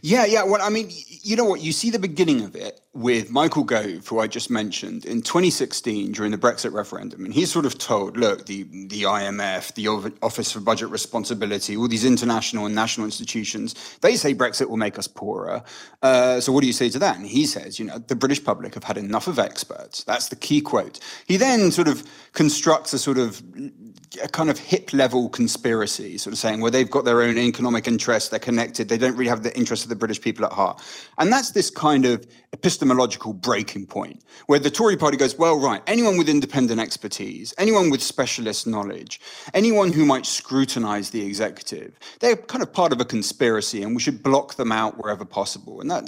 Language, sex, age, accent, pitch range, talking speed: English, male, 30-49, British, 115-160 Hz, 215 wpm